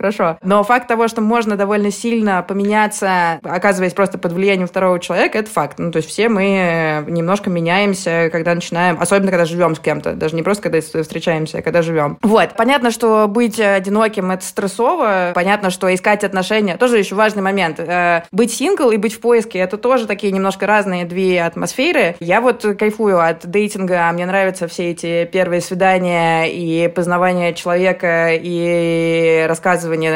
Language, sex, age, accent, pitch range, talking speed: Russian, female, 20-39, native, 175-215 Hz, 170 wpm